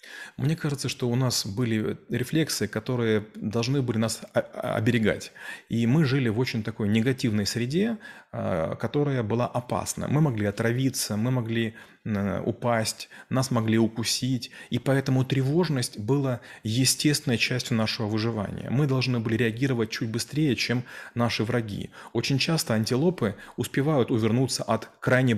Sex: male